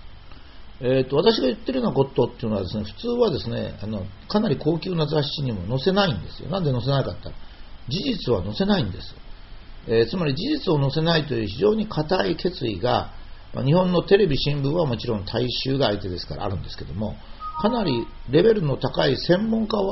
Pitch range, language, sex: 100-170 Hz, Japanese, male